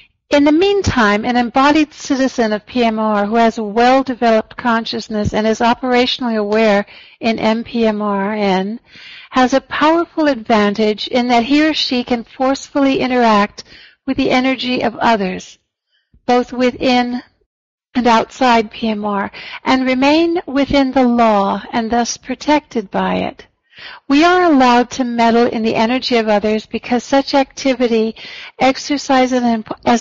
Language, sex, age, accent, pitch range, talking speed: English, female, 60-79, American, 225-265 Hz, 130 wpm